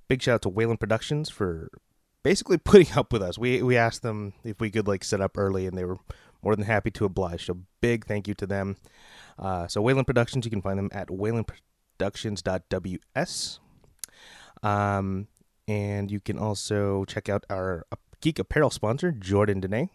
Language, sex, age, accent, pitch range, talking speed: English, male, 20-39, American, 100-125 Hz, 180 wpm